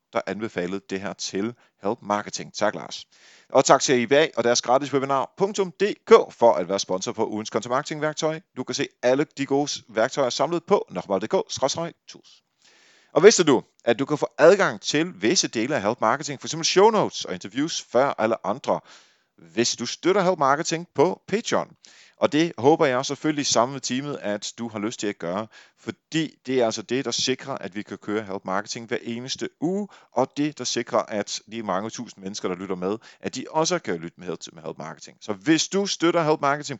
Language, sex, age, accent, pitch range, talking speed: Danish, male, 30-49, native, 105-155 Hz, 200 wpm